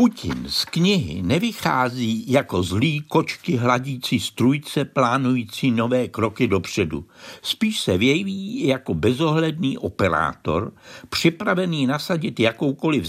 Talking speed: 100 wpm